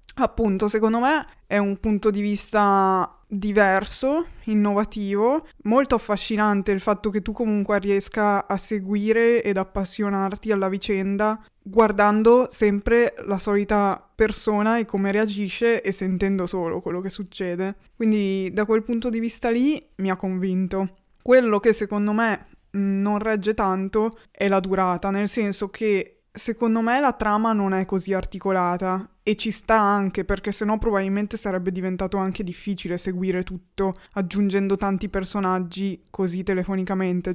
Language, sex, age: Italian, female, 20-39